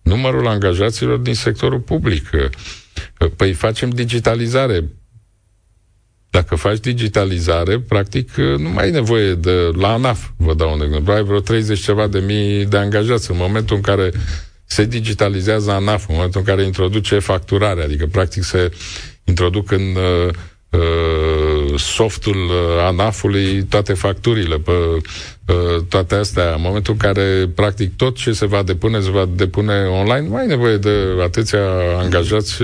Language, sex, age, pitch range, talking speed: Romanian, male, 50-69, 90-110 Hz, 145 wpm